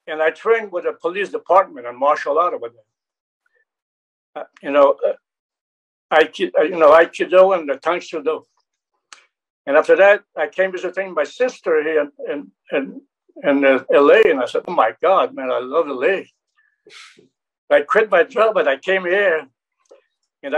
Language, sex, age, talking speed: English, male, 60-79, 155 wpm